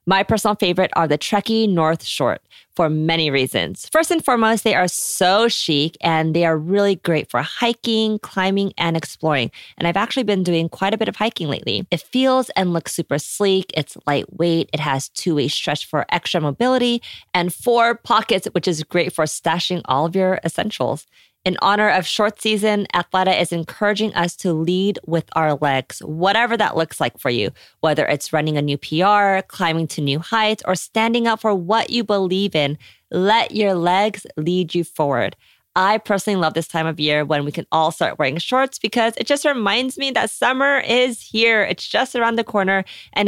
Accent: American